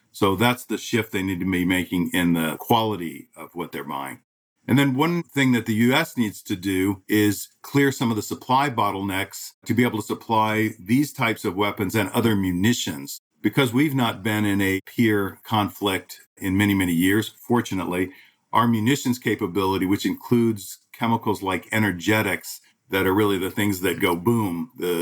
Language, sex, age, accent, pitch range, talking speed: English, male, 50-69, American, 95-115 Hz, 180 wpm